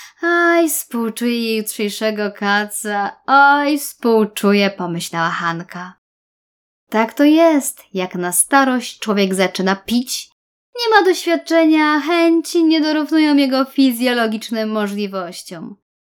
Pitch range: 195-295 Hz